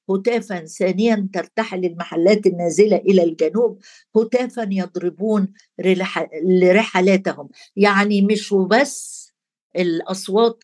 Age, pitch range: 50-69, 185-230 Hz